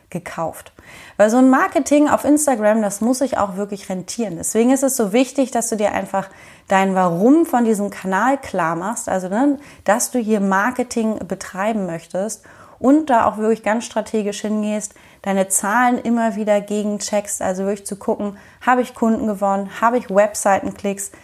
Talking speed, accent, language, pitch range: 165 wpm, German, German, 195-245 Hz